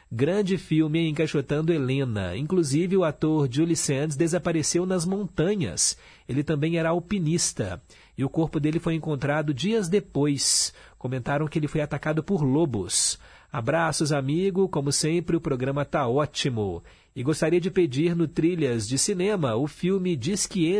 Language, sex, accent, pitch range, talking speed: Portuguese, male, Brazilian, 135-175 Hz, 145 wpm